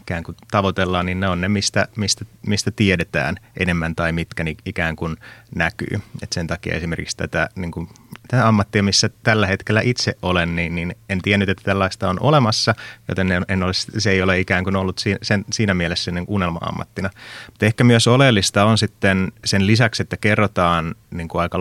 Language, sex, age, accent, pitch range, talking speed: Finnish, male, 30-49, native, 90-110 Hz, 180 wpm